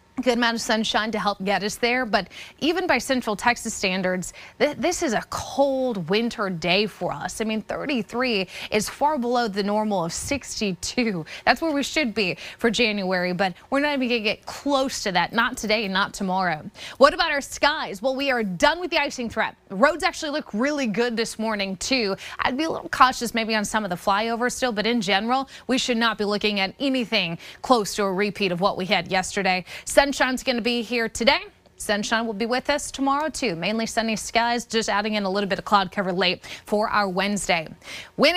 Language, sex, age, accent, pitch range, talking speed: English, female, 20-39, American, 205-265 Hz, 210 wpm